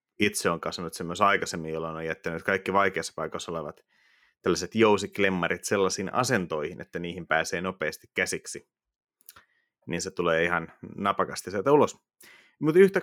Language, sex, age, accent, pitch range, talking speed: Finnish, male, 30-49, native, 90-110 Hz, 145 wpm